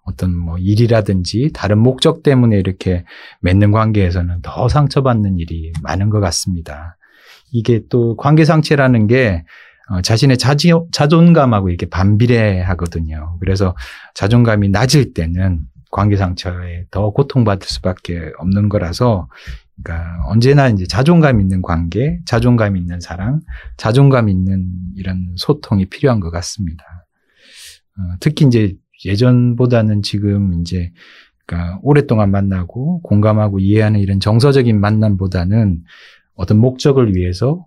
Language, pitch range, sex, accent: Korean, 90-120 Hz, male, native